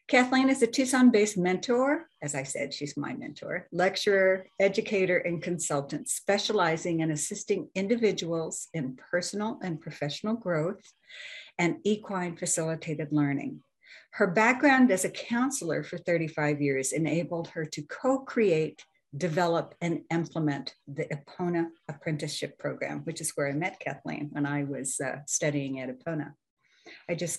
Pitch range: 150-195 Hz